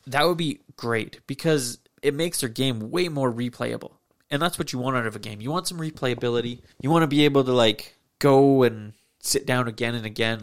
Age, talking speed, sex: 20-39, 225 wpm, male